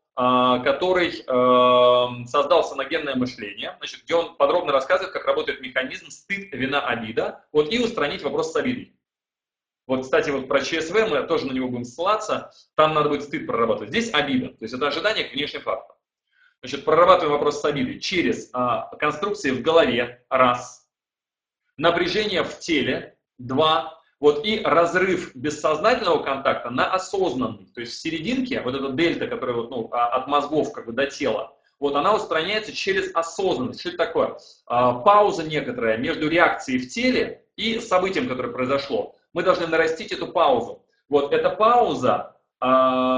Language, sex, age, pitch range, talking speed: Russian, male, 30-49, 130-185 Hz, 155 wpm